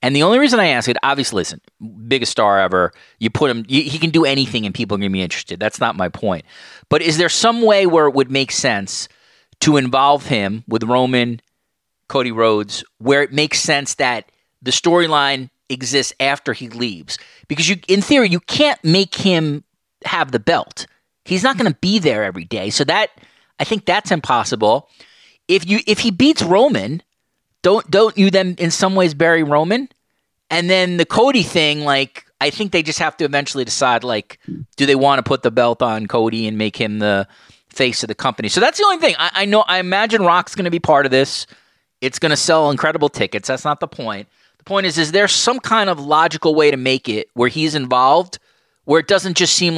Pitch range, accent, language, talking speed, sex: 130-185 Hz, American, English, 215 wpm, male